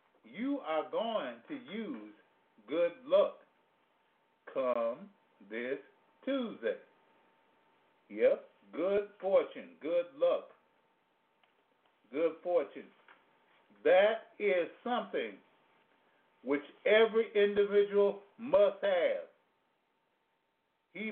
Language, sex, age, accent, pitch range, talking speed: English, male, 50-69, American, 180-255 Hz, 75 wpm